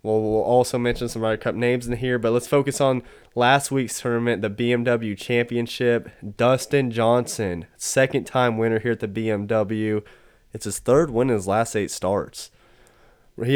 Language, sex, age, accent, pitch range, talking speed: English, male, 20-39, American, 110-125 Hz, 175 wpm